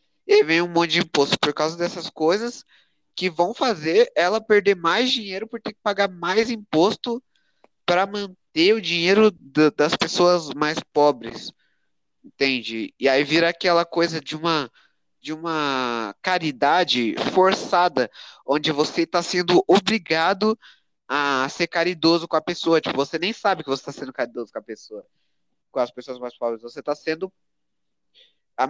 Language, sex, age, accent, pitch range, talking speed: Portuguese, male, 20-39, Brazilian, 140-185 Hz, 160 wpm